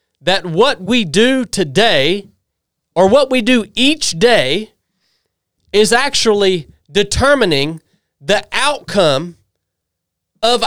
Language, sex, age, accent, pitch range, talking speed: English, male, 30-49, American, 175-280 Hz, 95 wpm